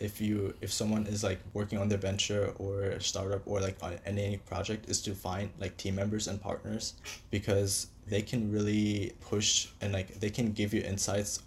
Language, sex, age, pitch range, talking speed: English, male, 20-39, 95-105 Hz, 200 wpm